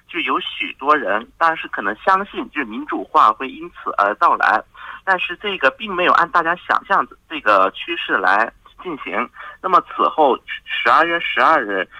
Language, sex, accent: Korean, male, Chinese